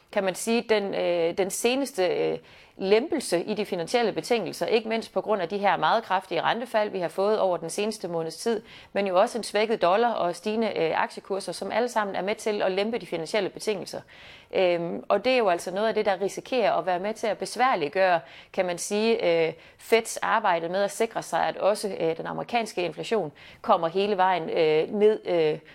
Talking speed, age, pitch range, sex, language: 210 wpm, 30-49, 170-220 Hz, female, Danish